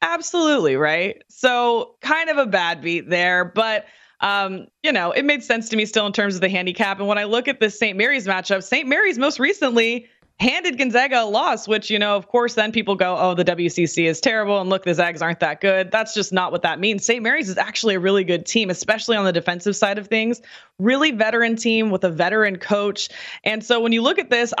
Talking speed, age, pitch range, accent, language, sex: 235 wpm, 20-39, 190-240 Hz, American, English, female